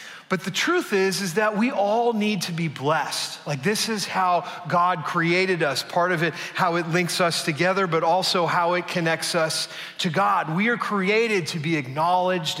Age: 30-49